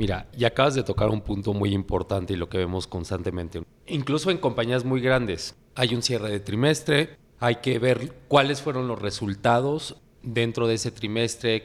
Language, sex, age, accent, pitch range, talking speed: English, male, 30-49, Mexican, 100-130 Hz, 180 wpm